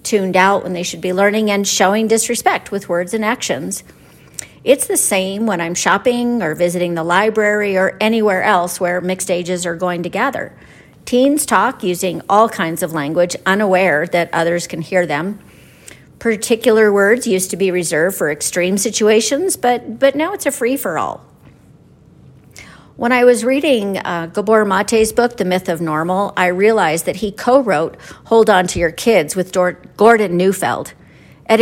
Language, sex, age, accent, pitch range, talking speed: English, female, 50-69, American, 180-225 Hz, 170 wpm